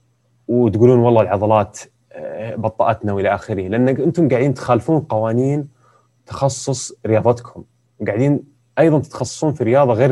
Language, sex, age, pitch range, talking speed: Arabic, male, 30-49, 105-125 Hz, 115 wpm